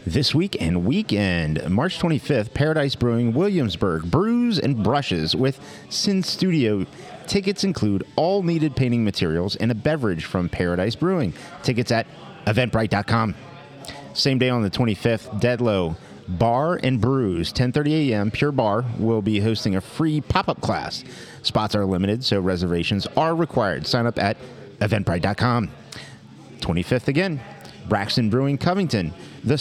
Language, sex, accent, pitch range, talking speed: English, male, American, 100-140 Hz, 135 wpm